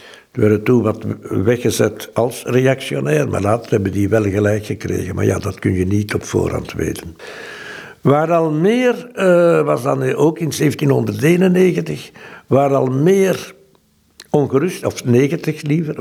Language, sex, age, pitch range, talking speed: Dutch, male, 60-79, 120-165 Hz, 145 wpm